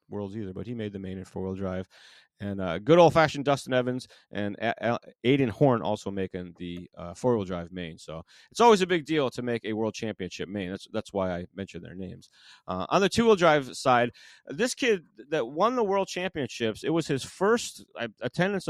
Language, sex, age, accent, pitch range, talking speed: English, male, 30-49, American, 100-150 Hz, 220 wpm